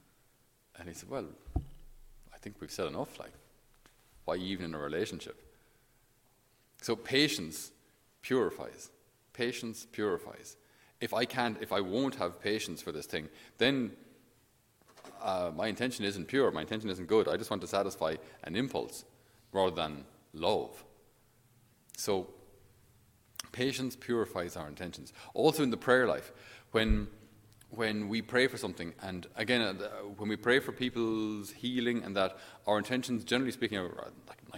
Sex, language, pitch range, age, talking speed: male, English, 95-120 Hz, 30-49, 145 wpm